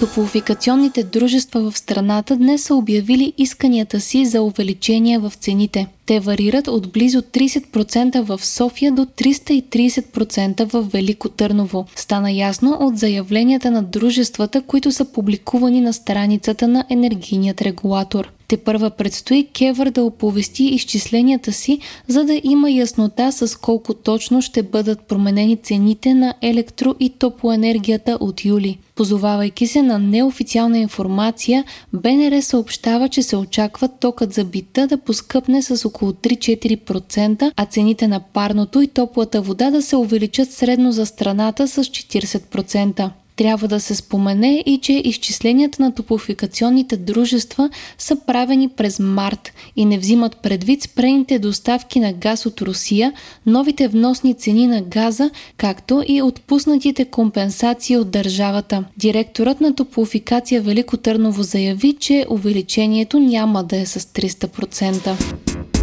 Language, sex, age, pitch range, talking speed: Bulgarian, female, 20-39, 210-255 Hz, 135 wpm